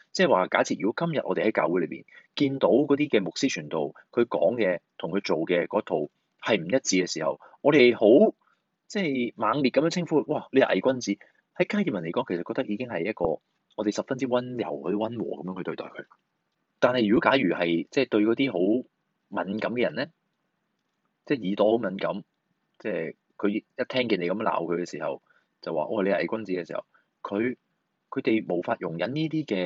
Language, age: Chinese, 20-39